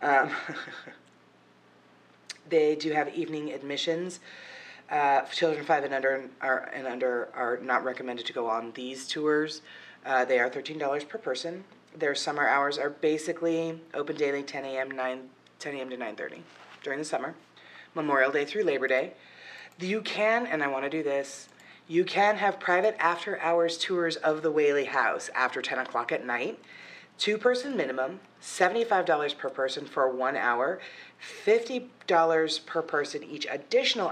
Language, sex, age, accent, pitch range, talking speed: English, female, 30-49, American, 135-185 Hz, 155 wpm